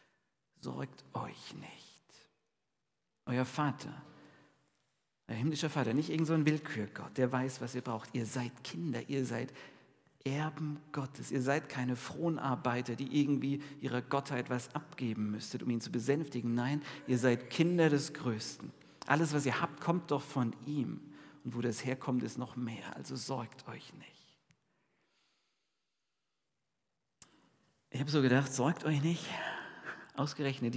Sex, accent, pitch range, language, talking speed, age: male, German, 120-150 Hz, German, 140 wpm, 50-69